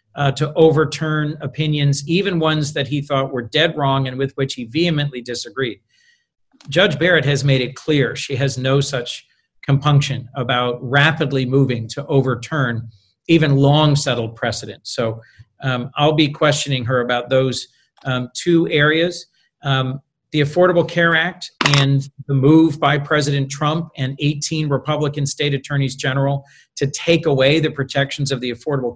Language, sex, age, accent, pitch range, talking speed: English, male, 40-59, American, 135-155 Hz, 150 wpm